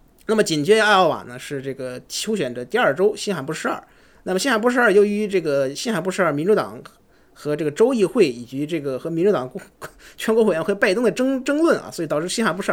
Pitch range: 140-205 Hz